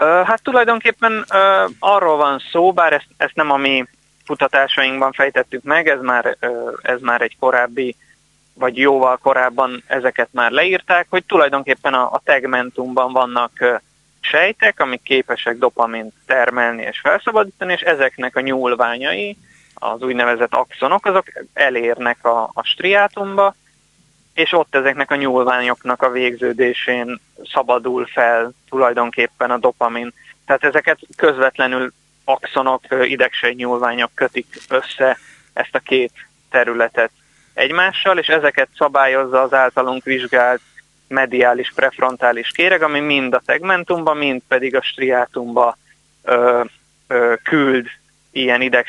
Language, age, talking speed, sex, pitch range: Hungarian, 20-39, 120 wpm, male, 125-150 Hz